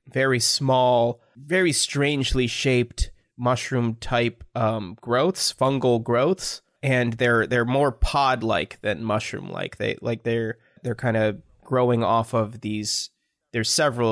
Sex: male